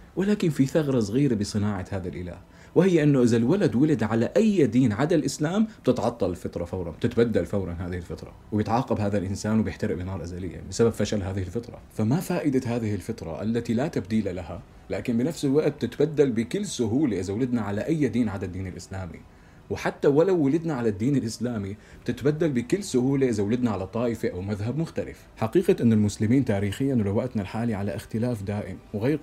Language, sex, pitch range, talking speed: Arabic, male, 100-130 Hz, 170 wpm